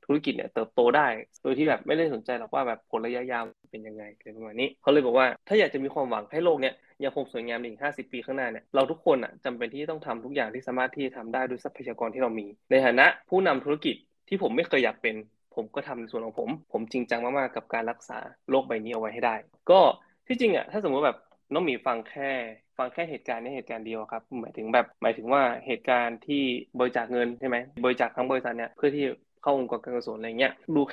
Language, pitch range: Thai, 115-140 Hz